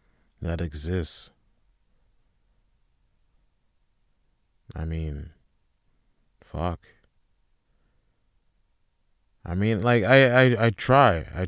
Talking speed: 70 wpm